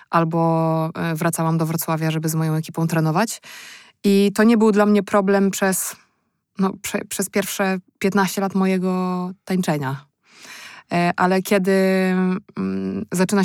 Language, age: Polish, 20-39